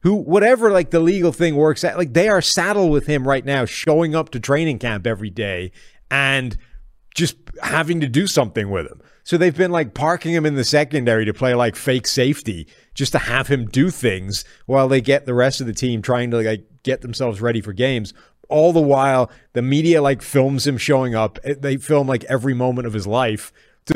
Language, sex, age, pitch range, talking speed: English, male, 30-49, 110-145 Hz, 215 wpm